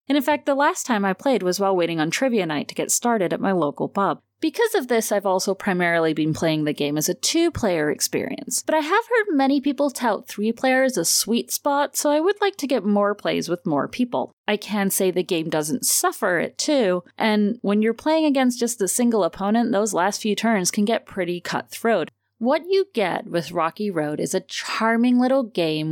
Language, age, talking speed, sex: English, 30-49, 220 wpm, female